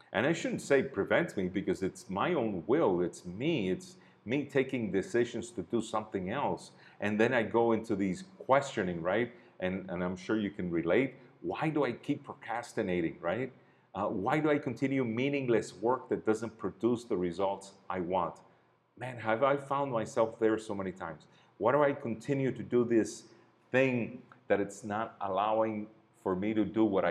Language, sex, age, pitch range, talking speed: English, male, 40-59, 95-115 Hz, 180 wpm